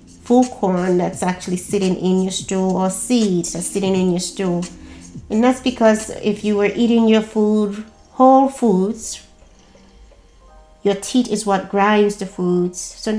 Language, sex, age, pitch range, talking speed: English, female, 30-49, 185-220 Hz, 155 wpm